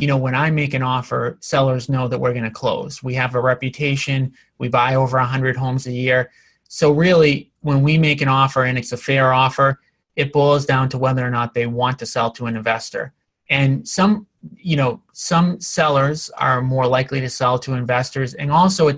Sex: male